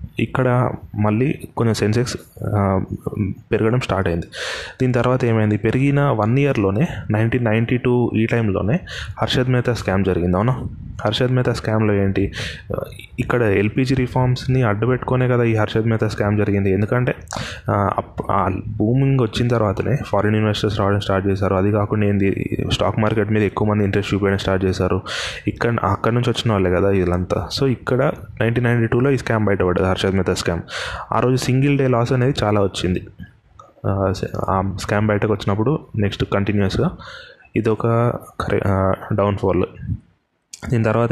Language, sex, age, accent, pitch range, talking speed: Telugu, male, 20-39, native, 100-120 Hz, 135 wpm